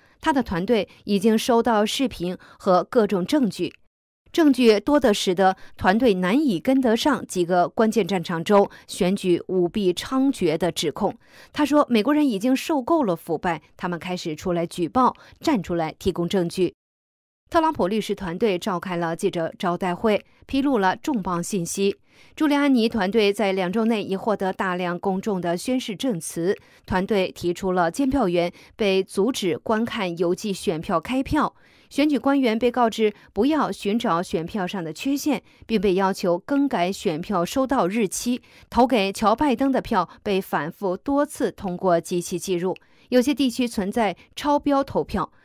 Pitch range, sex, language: 180-235 Hz, female, English